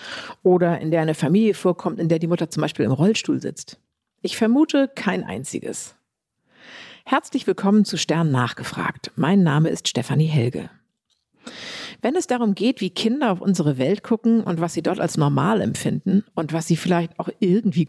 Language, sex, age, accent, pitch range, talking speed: German, female, 50-69, German, 170-220 Hz, 175 wpm